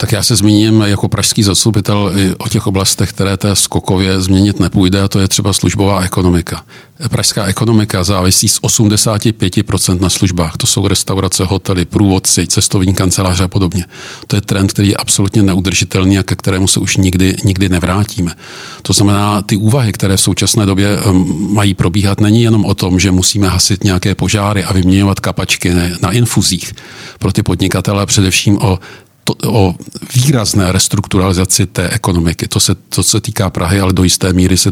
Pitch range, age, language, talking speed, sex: 95-110 Hz, 50-69, Czech, 170 wpm, male